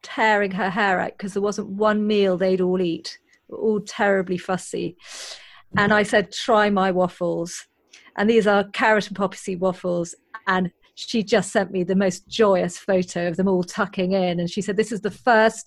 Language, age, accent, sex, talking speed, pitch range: English, 40-59, British, female, 195 wpm, 185-220 Hz